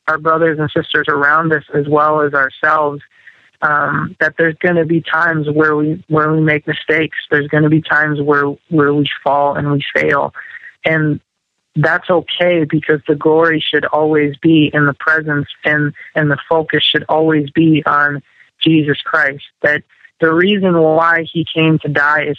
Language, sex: English, male